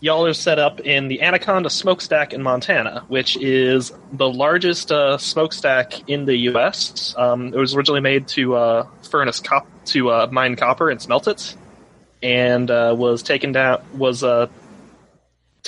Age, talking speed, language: 20-39, 160 wpm, English